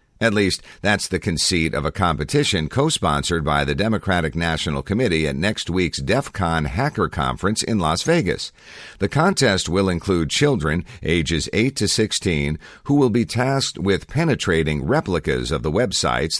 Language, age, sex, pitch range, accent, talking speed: English, 50-69, male, 75-100 Hz, American, 155 wpm